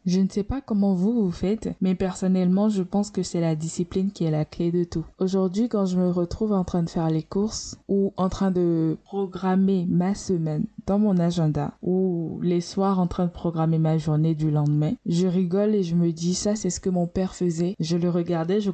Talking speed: 225 wpm